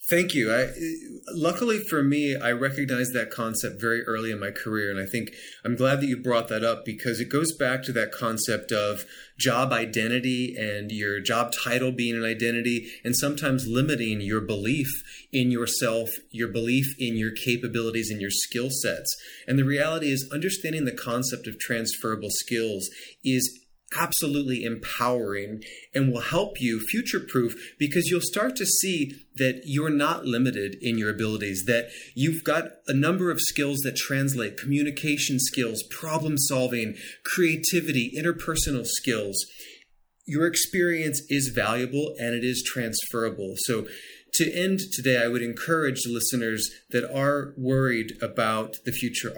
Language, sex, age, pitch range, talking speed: English, male, 30-49, 115-145 Hz, 155 wpm